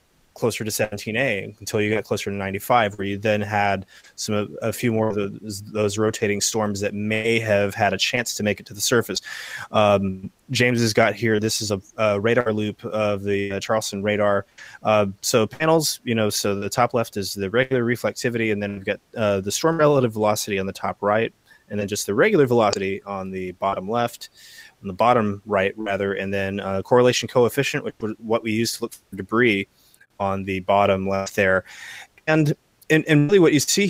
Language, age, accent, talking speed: English, 20-39, American, 210 wpm